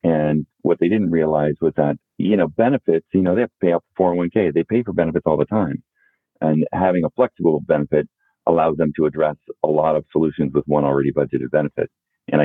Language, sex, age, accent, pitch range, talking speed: English, male, 40-59, American, 70-85 Hz, 210 wpm